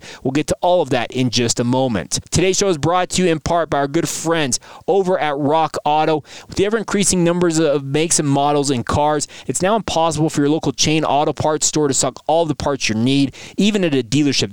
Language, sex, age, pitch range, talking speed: English, male, 20-39, 135-165 Hz, 240 wpm